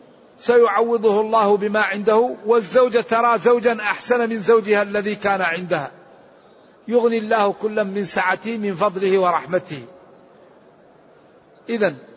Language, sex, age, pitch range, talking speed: Arabic, male, 50-69, 185-225 Hz, 110 wpm